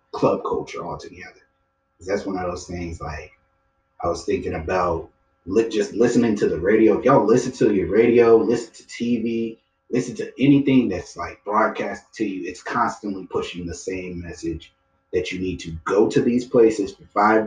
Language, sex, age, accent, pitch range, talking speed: English, male, 30-49, American, 90-110 Hz, 180 wpm